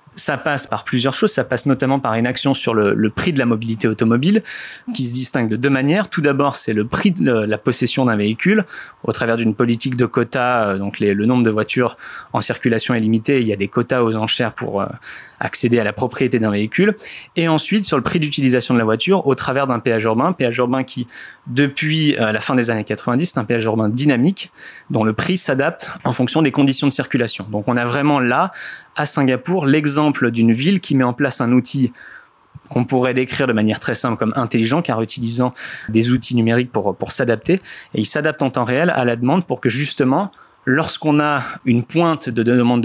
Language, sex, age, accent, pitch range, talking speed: French, male, 30-49, French, 115-145 Hz, 215 wpm